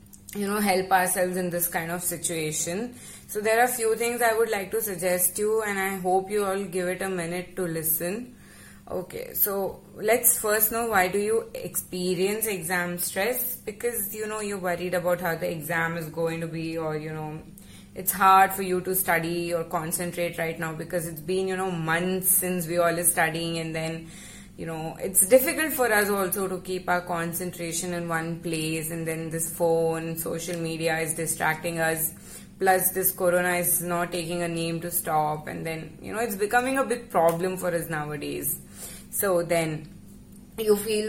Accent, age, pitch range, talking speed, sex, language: Indian, 20-39, 165-195 Hz, 190 wpm, female, English